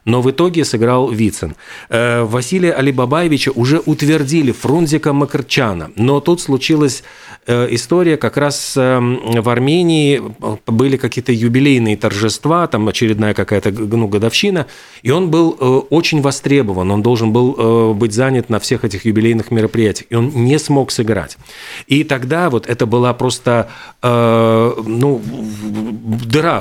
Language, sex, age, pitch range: Russian, male, 40-59, 115-145 Hz